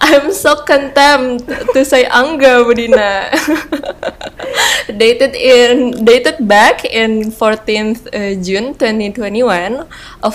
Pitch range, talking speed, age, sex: 195-245 Hz, 95 wpm, 20-39, female